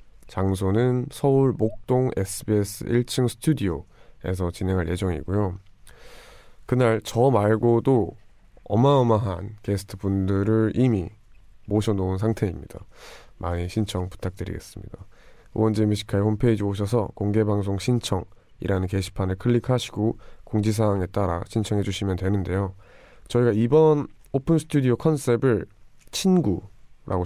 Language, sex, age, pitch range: Korean, male, 20-39, 95-115 Hz